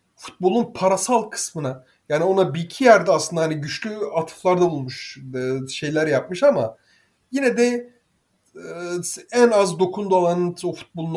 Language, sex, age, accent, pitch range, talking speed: Turkish, male, 30-49, native, 135-195 Hz, 130 wpm